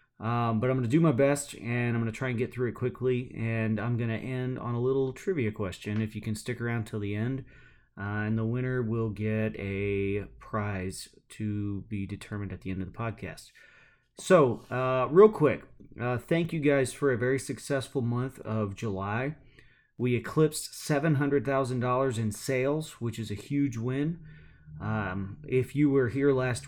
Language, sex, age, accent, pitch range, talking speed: English, male, 30-49, American, 110-135 Hz, 190 wpm